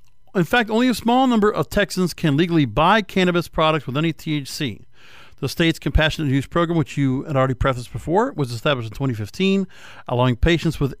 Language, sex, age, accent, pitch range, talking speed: English, male, 50-69, American, 125-165 Hz, 185 wpm